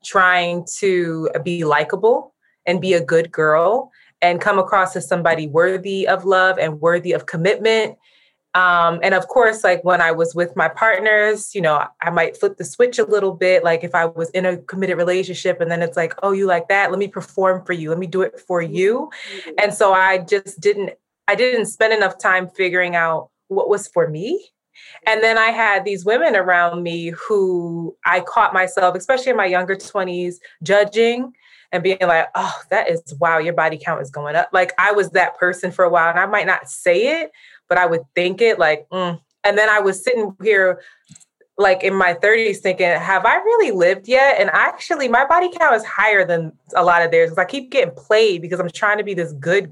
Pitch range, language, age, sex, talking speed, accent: 175-225 Hz, English, 20-39, female, 215 wpm, American